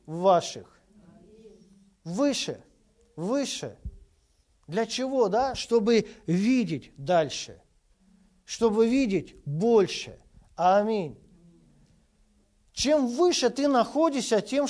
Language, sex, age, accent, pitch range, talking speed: Russian, male, 50-69, native, 160-230 Hz, 70 wpm